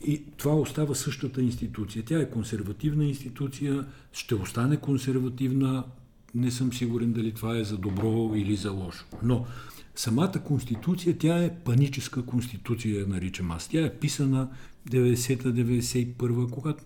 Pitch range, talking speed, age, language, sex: 105-130 Hz, 135 wpm, 50-69, Bulgarian, male